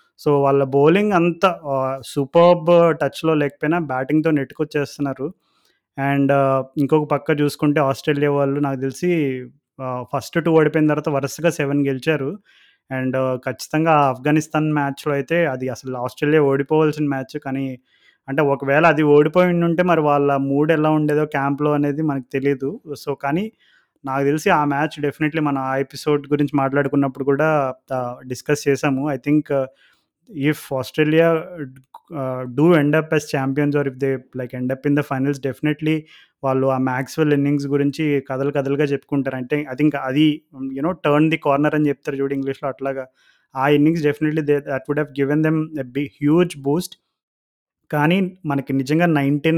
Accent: native